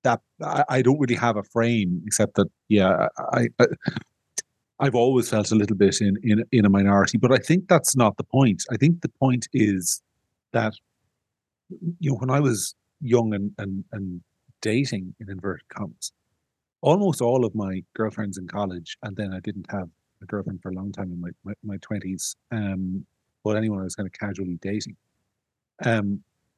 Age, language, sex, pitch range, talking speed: 30-49, English, male, 100-125 Hz, 185 wpm